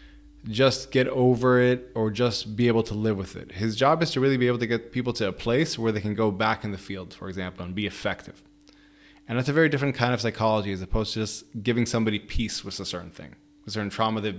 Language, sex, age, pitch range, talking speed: English, male, 20-39, 105-135 Hz, 255 wpm